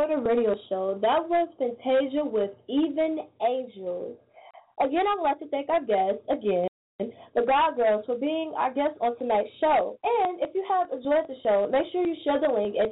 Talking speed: 195 wpm